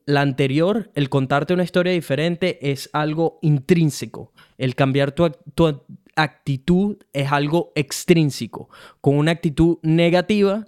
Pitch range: 140-170 Hz